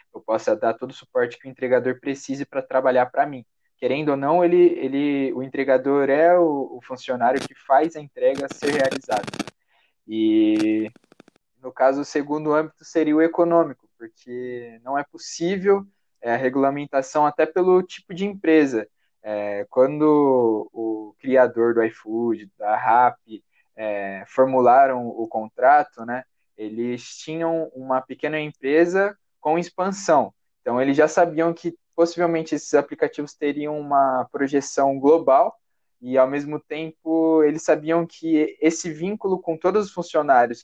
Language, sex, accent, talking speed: Portuguese, male, Brazilian, 135 wpm